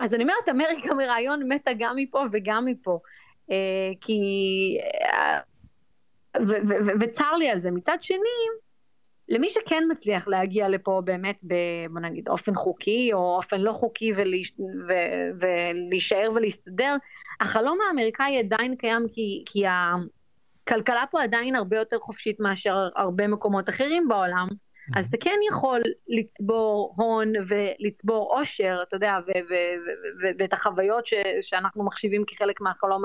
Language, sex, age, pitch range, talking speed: Hebrew, female, 30-49, 190-270 Hz, 140 wpm